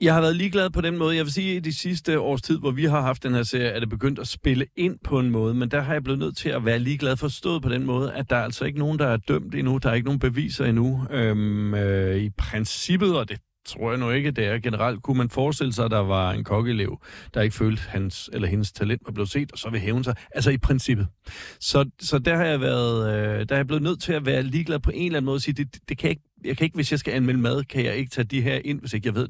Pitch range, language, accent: 110-135 Hz, Danish, native